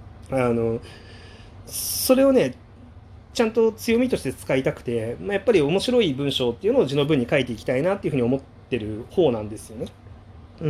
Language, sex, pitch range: Japanese, male, 115-155 Hz